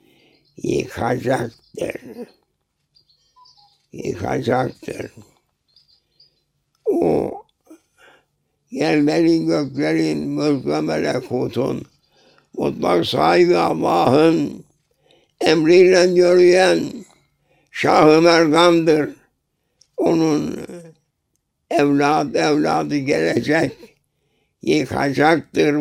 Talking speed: 45 wpm